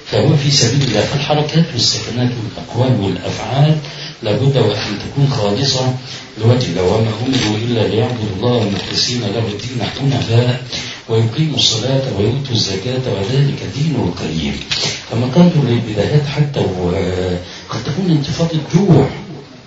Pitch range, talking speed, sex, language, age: 105-135 Hz, 115 wpm, male, Arabic, 50-69